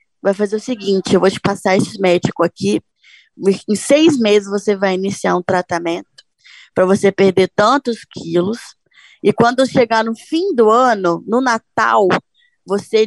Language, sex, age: Portuguese, female, 20-39